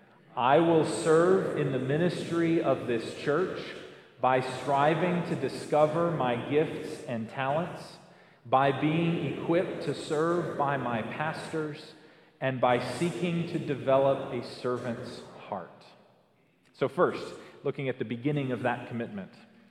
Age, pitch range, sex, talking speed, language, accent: 40-59, 135-175 Hz, male, 130 wpm, English, American